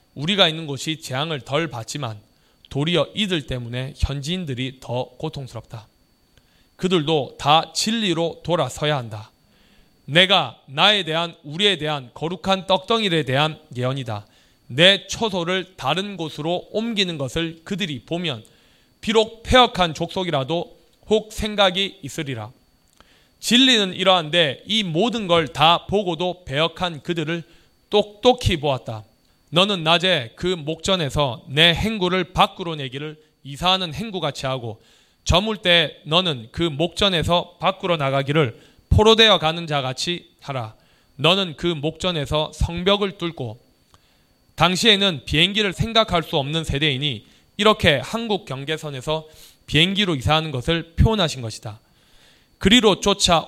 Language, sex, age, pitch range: Korean, male, 20-39, 140-185 Hz